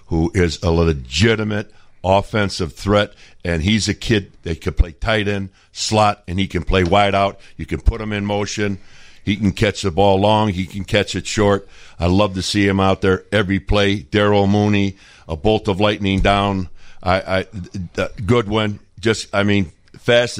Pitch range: 95-115 Hz